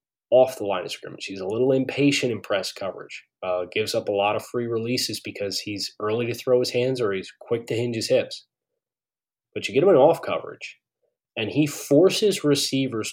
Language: English